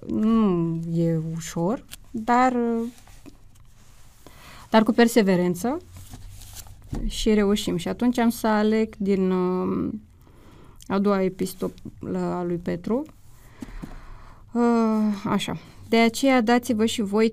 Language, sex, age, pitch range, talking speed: Romanian, female, 20-39, 185-220 Hz, 95 wpm